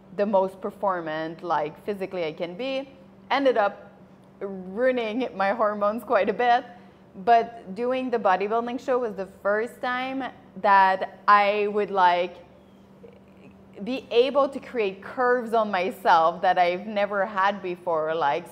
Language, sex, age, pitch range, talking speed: English, female, 20-39, 185-230 Hz, 135 wpm